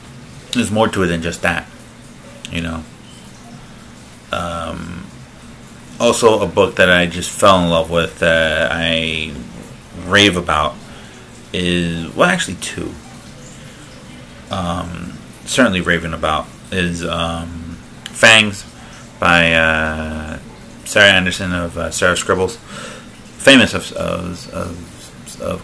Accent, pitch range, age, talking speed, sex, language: American, 85-105 Hz, 30-49, 115 wpm, male, English